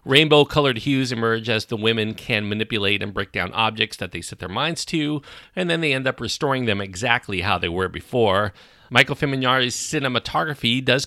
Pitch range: 95-135 Hz